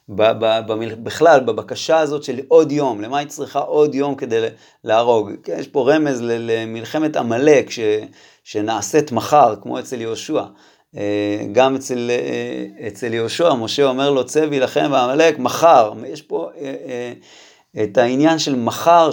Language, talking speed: Hebrew, 125 wpm